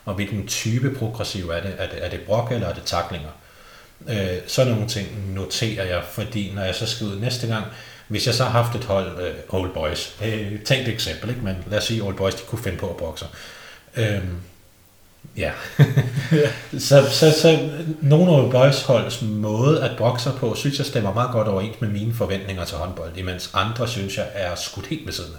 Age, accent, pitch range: 30-49, native, 100-125 Hz